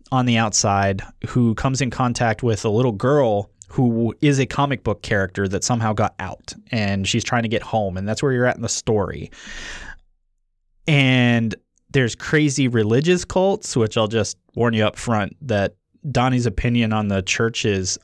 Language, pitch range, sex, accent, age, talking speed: English, 100-130 Hz, male, American, 20-39, 180 wpm